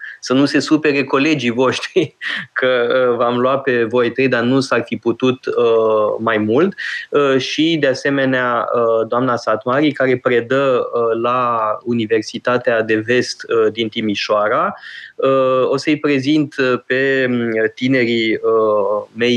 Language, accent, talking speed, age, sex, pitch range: Romanian, native, 120 wpm, 20-39, male, 115-140 Hz